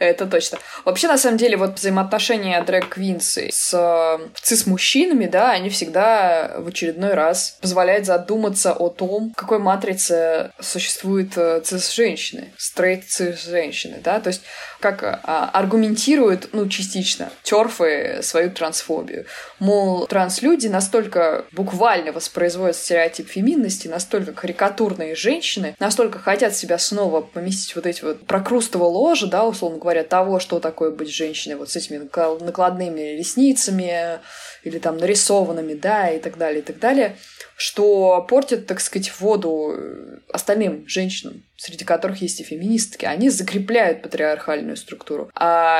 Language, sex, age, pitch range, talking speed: Russian, female, 20-39, 175-220 Hz, 130 wpm